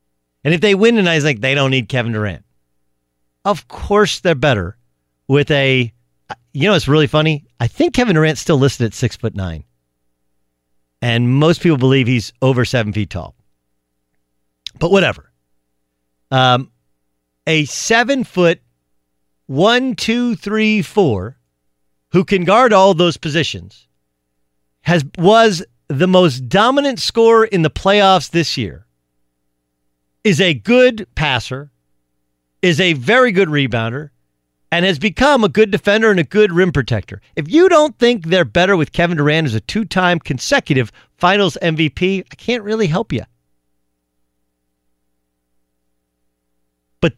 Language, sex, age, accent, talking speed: English, male, 50-69, American, 140 wpm